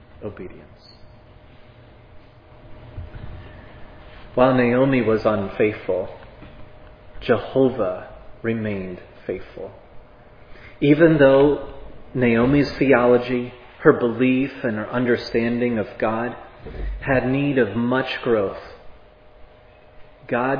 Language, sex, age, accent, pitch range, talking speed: English, male, 30-49, American, 110-130 Hz, 75 wpm